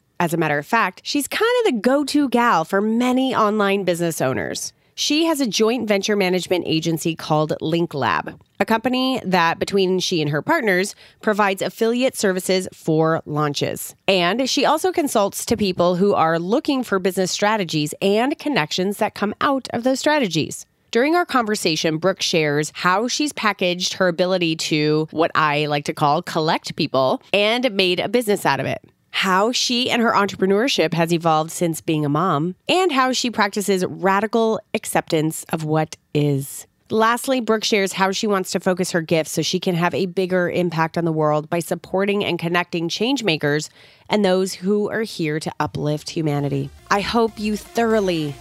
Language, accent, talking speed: English, American, 175 wpm